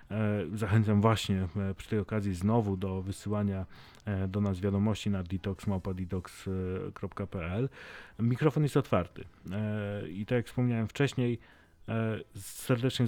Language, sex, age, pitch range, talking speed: Polish, male, 30-49, 100-115 Hz, 100 wpm